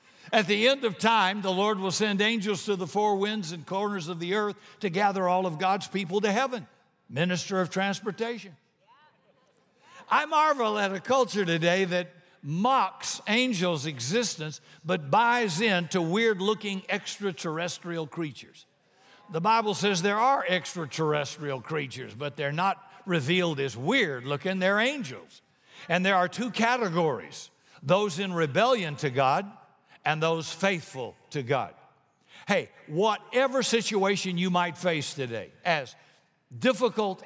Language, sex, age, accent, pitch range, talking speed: English, male, 60-79, American, 155-205 Hz, 135 wpm